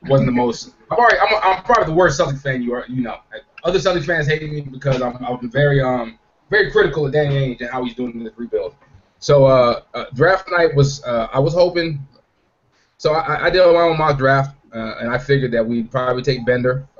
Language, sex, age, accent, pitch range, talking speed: English, male, 20-39, American, 115-145 Hz, 235 wpm